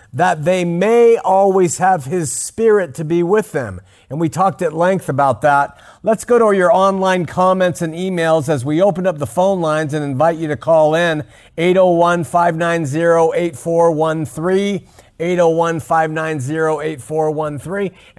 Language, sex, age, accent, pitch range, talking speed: English, male, 50-69, American, 150-185 Hz, 140 wpm